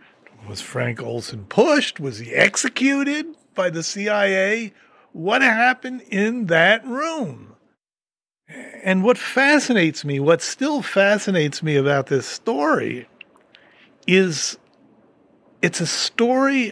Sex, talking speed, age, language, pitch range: male, 110 wpm, 50-69, English, 150-225 Hz